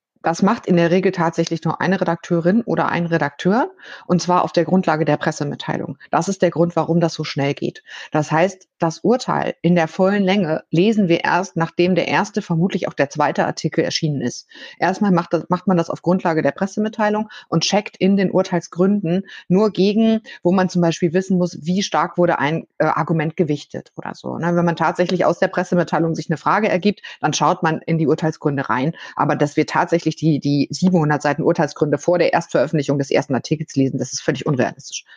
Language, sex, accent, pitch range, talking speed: German, female, German, 140-180 Hz, 200 wpm